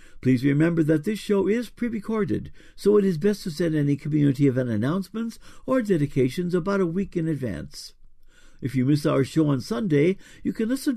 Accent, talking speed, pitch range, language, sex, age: American, 185 wpm, 140-190 Hz, English, male, 60-79